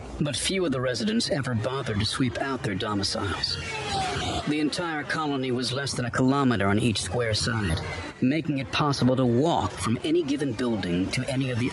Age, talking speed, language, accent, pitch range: 50-69, 190 wpm, English, American, 105-135 Hz